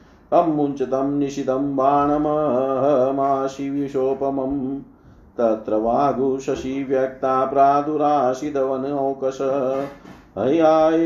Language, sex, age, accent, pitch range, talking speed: Hindi, male, 40-59, native, 130-150 Hz, 55 wpm